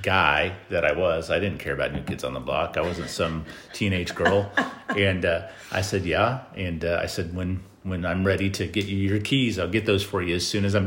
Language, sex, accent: English, male, American